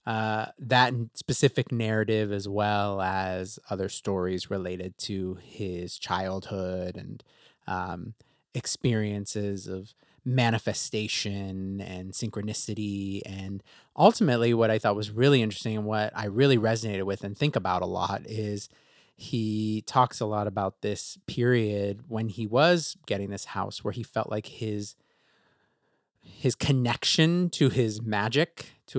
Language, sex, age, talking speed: English, male, 30-49, 130 wpm